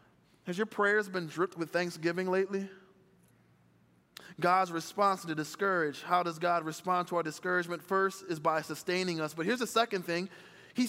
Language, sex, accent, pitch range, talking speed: English, male, American, 175-225 Hz, 165 wpm